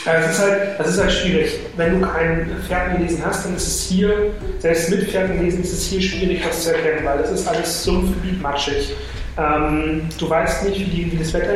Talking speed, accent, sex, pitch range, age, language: 210 wpm, German, male, 155-185 Hz, 30-49, German